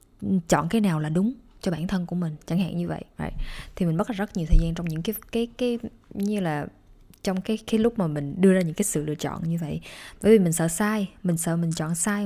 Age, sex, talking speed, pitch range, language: 20-39, female, 270 wpm, 165-205 Hz, Vietnamese